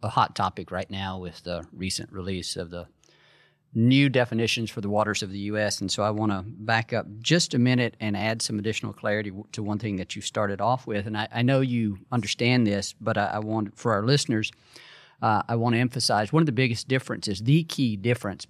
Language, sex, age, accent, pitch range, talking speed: English, male, 40-59, American, 100-115 Hz, 230 wpm